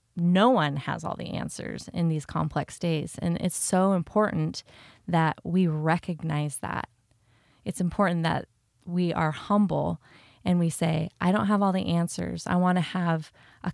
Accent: American